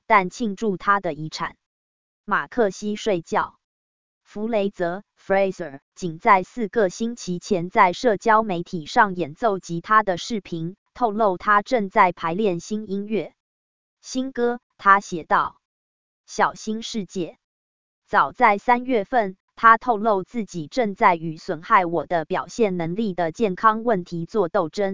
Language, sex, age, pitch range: English, female, 20-39, 175-220 Hz